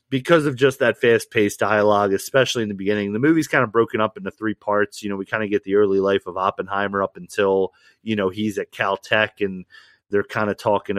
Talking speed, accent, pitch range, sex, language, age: 230 wpm, American, 95-115 Hz, male, English, 30-49